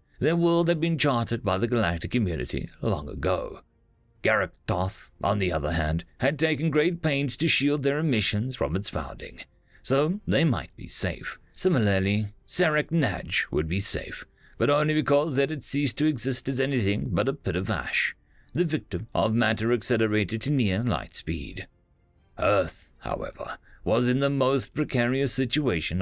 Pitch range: 95-135 Hz